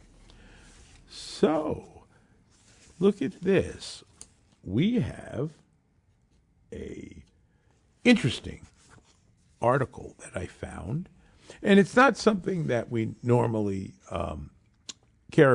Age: 50-69